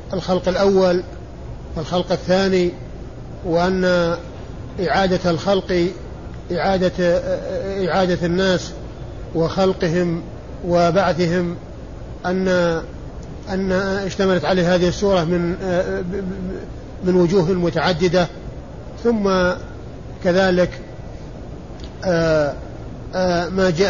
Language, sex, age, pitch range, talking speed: Arabic, male, 50-69, 170-185 Hz, 65 wpm